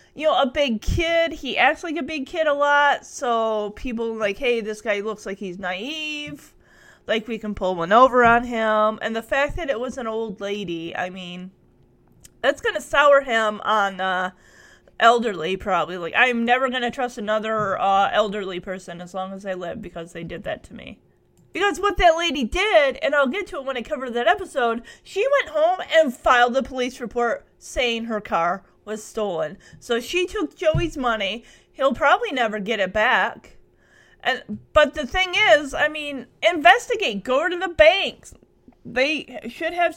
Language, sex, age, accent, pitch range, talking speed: English, female, 30-49, American, 215-315 Hz, 190 wpm